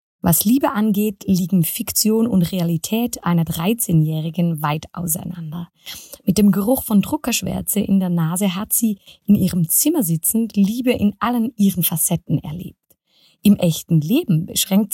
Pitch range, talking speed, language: 170-220 Hz, 140 wpm, German